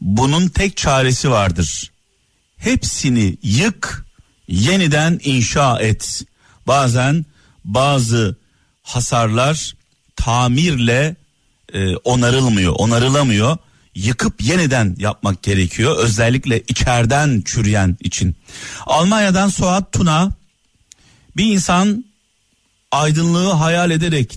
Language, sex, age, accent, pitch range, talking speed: Turkish, male, 50-69, native, 115-155 Hz, 80 wpm